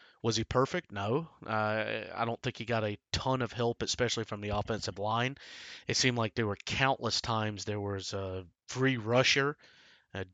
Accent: American